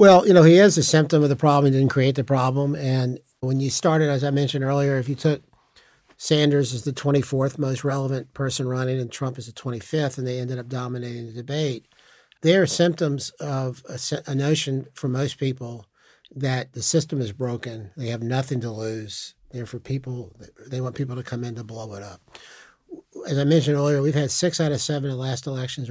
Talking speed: 215 wpm